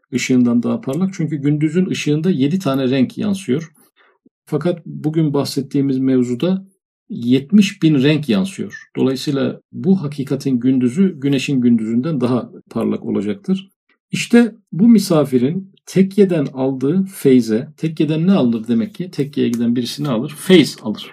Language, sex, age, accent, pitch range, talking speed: Turkish, male, 50-69, native, 125-180 Hz, 125 wpm